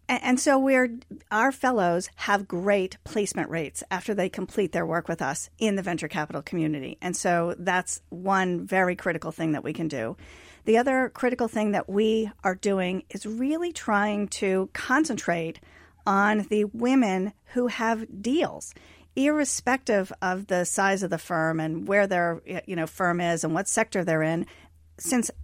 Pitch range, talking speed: 175-215 Hz, 170 wpm